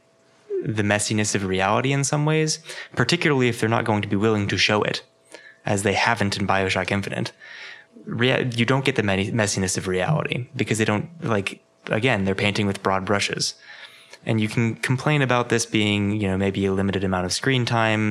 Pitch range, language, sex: 95-120 Hz, English, male